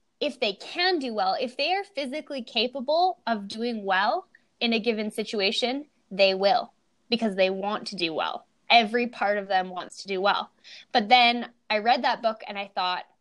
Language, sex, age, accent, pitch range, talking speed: English, female, 10-29, American, 200-250 Hz, 190 wpm